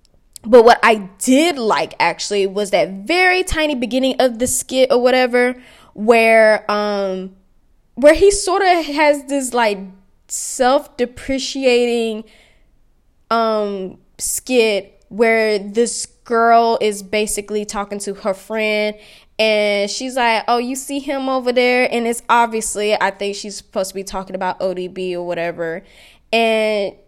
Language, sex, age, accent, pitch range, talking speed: English, female, 10-29, American, 210-270 Hz, 140 wpm